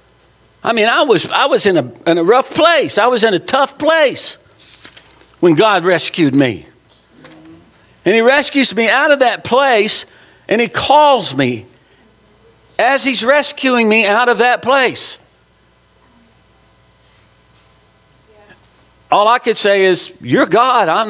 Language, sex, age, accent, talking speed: English, male, 50-69, American, 140 wpm